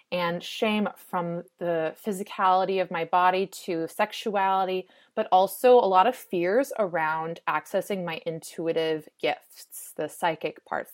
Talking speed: 130 wpm